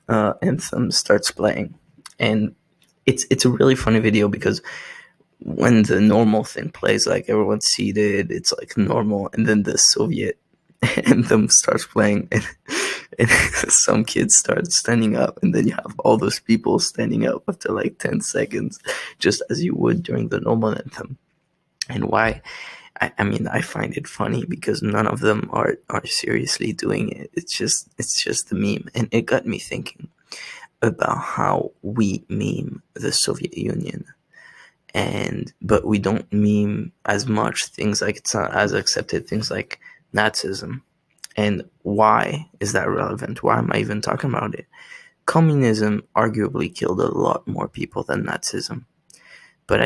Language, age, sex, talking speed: English, 20-39, male, 160 wpm